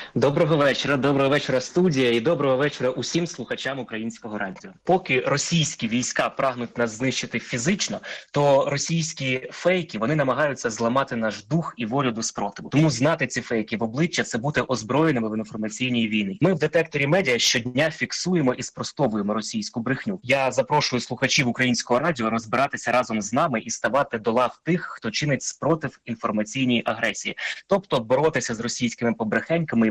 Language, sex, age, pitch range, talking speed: Ukrainian, male, 20-39, 120-160 Hz, 155 wpm